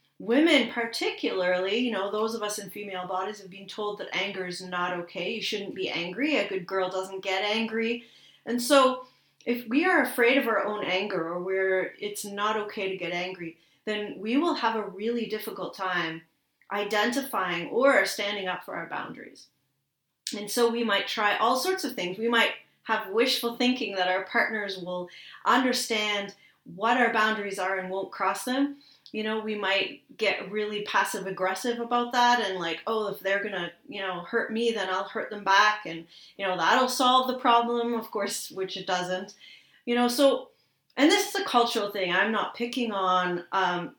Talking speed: 190 wpm